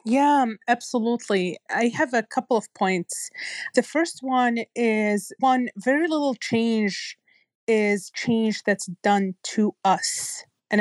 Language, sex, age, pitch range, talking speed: English, female, 30-49, 200-240 Hz, 130 wpm